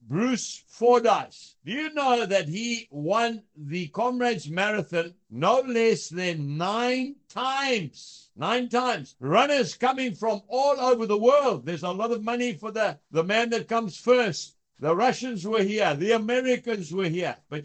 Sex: male